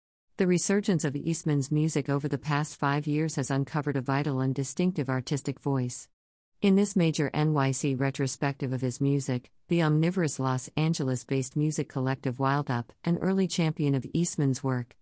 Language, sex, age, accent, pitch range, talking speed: English, female, 50-69, American, 130-160 Hz, 160 wpm